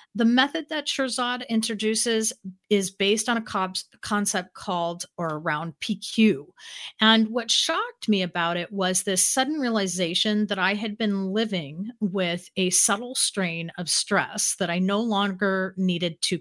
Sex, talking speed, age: female, 150 wpm, 40-59